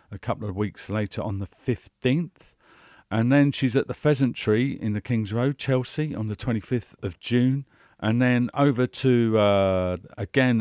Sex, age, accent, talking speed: male, 50-69, British, 170 wpm